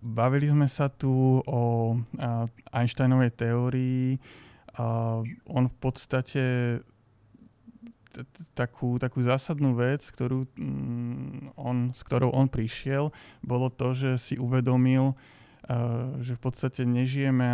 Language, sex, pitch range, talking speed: Slovak, male, 120-130 Hz, 100 wpm